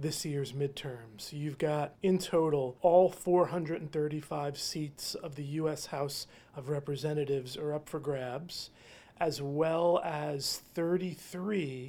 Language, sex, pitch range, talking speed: English, male, 140-175 Hz, 120 wpm